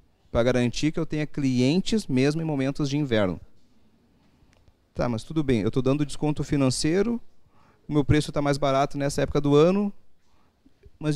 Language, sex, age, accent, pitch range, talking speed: Portuguese, male, 30-49, Brazilian, 115-155 Hz, 165 wpm